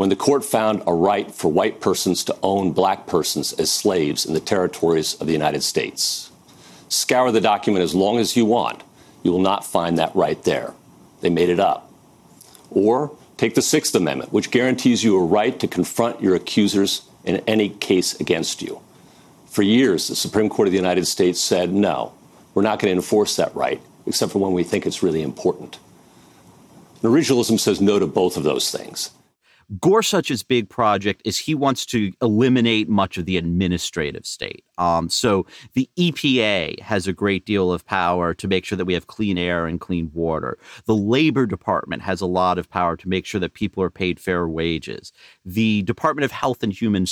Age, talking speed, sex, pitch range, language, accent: 50-69, 190 wpm, male, 90-110 Hz, English, American